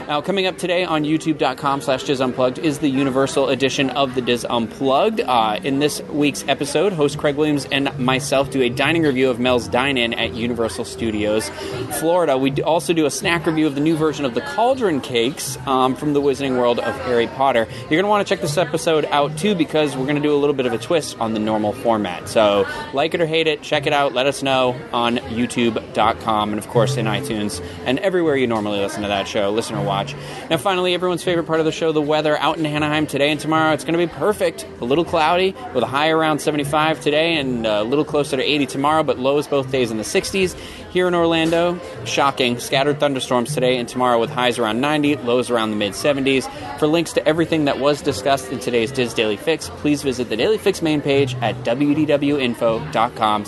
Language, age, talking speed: English, 30-49, 220 wpm